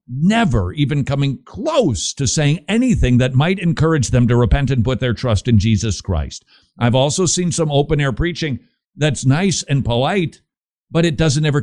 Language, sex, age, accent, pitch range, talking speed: English, male, 50-69, American, 125-175 Hz, 175 wpm